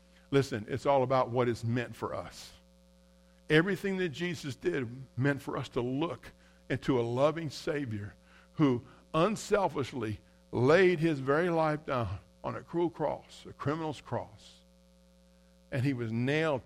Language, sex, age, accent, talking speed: English, male, 50-69, American, 145 wpm